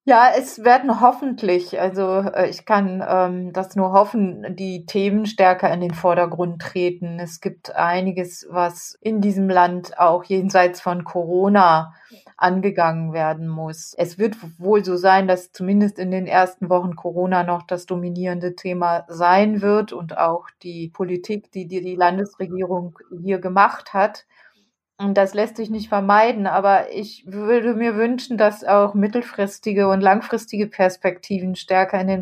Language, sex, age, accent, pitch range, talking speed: German, female, 30-49, German, 180-205 Hz, 150 wpm